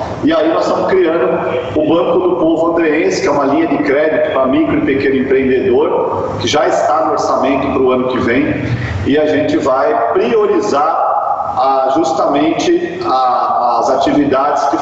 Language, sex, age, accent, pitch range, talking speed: Portuguese, male, 40-59, Brazilian, 135-170 Hz, 160 wpm